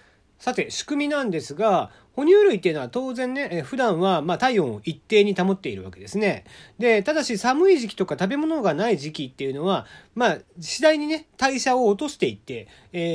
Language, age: Japanese, 40-59